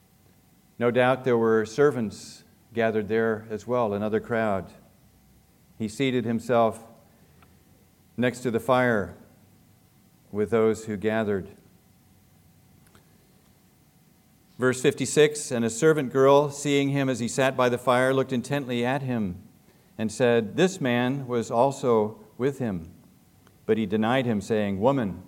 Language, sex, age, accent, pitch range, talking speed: English, male, 50-69, American, 105-130 Hz, 130 wpm